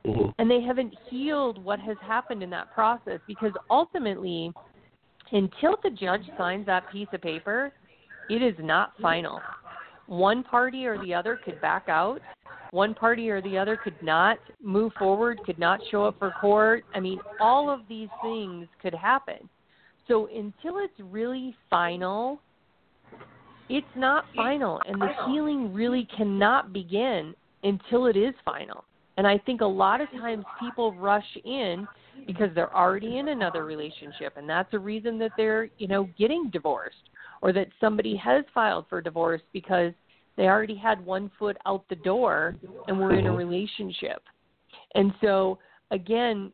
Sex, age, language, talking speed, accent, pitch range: female, 40-59, English, 160 wpm, American, 190-235 Hz